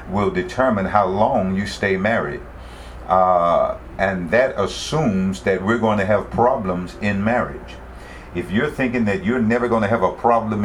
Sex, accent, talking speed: male, American, 170 wpm